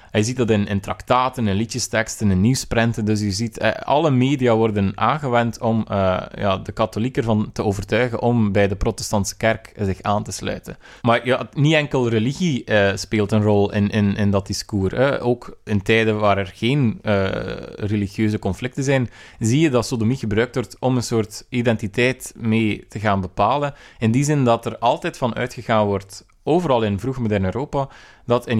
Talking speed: 185 wpm